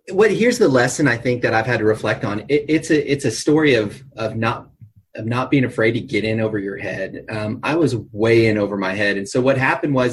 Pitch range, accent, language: 110-135 Hz, American, English